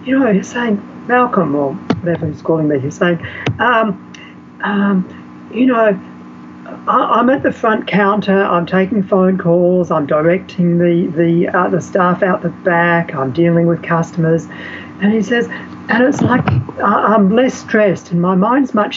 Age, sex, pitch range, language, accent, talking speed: 50-69, female, 135-195 Hz, English, Australian, 170 wpm